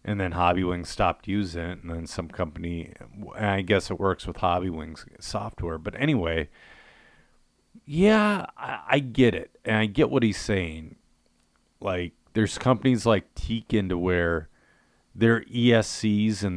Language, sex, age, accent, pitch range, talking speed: English, male, 40-59, American, 85-110 Hz, 145 wpm